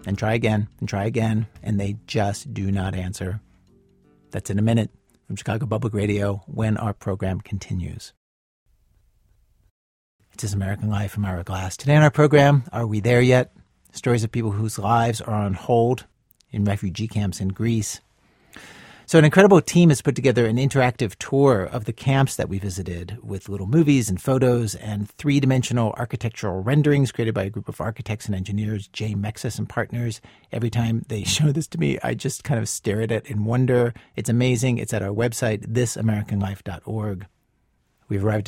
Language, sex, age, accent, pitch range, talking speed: English, male, 50-69, American, 100-125 Hz, 175 wpm